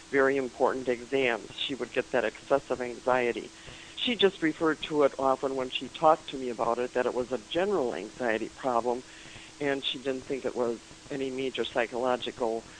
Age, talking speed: 50-69, 180 wpm